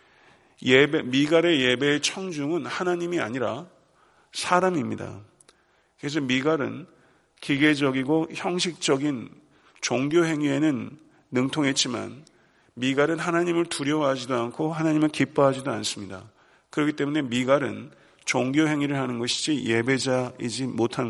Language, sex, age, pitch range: Korean, male, 40-59, 125-155 Hz